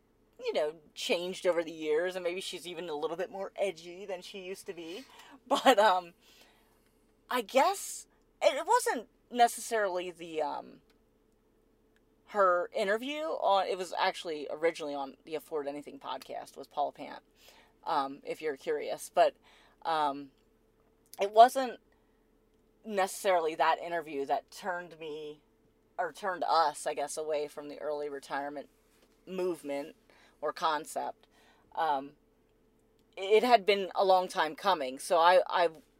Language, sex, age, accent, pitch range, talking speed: English, female, 30-49, American, 150-200 Hz, 135 wpm